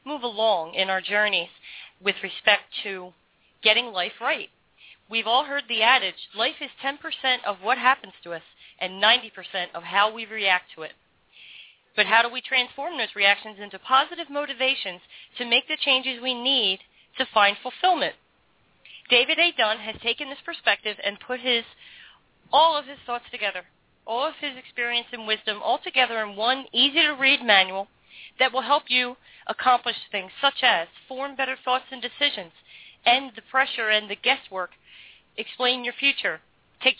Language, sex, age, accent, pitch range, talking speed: English, female, 40-59, American, 200-265 Hz, 165 wpm